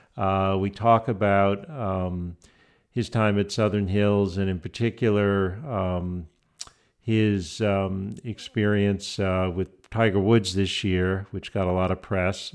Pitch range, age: 95-105 Hz, 50-69